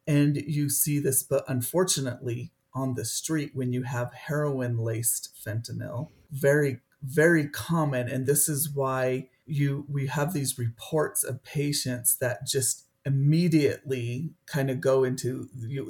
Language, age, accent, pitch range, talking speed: English, 40-59, American, 125-145 Hz, 135 wpm